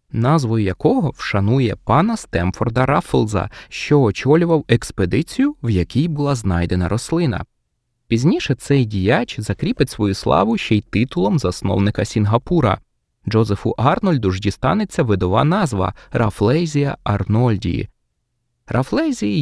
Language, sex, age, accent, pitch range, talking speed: Ukrainian, male, 20-39, native, 105-155 Hz, 110 wpm